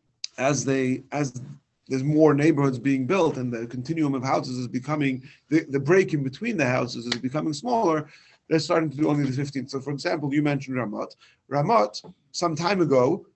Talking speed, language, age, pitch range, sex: 190 wpm, English, 40-59, 130-165 Hz, male